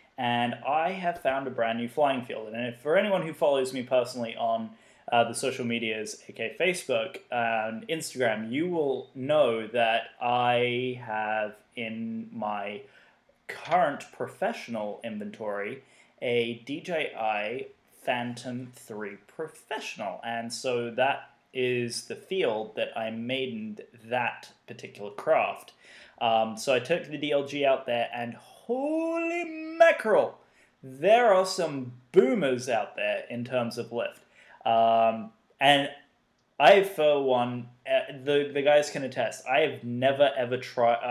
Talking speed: 135 wpm